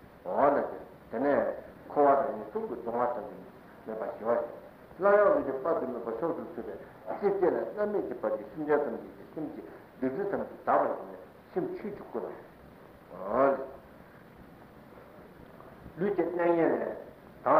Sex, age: male, 60-79